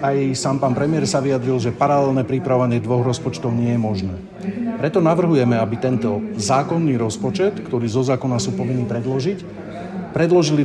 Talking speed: 150 wpm